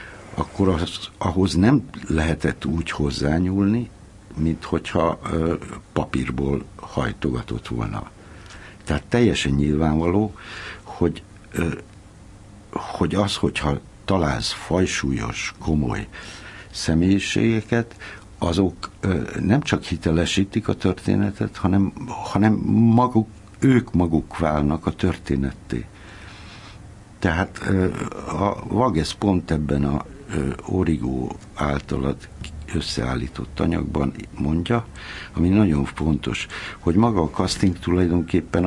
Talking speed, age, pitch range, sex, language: 95 wpm, 60-79, 80-105 Hz, male, Hungarian